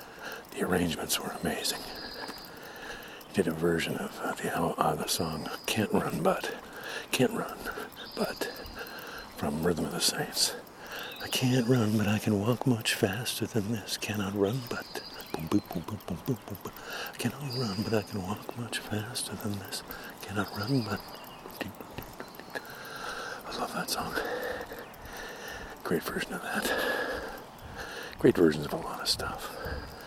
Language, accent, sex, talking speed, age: English, American, male, 150 wpm, 60-79